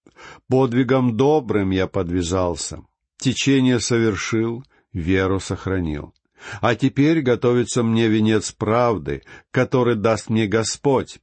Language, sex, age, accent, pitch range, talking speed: Russian, male, 50-69, native, 100-135 Hz, 95 wpm